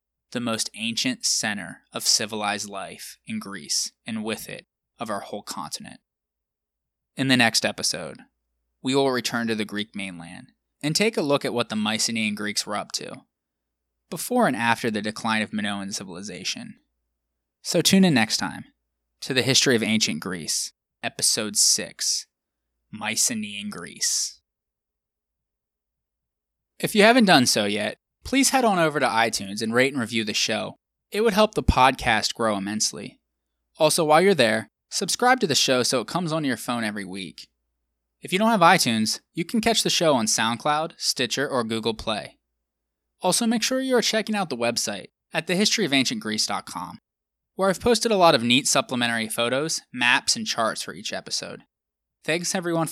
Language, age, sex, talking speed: English, 20-39, male, 165 wpm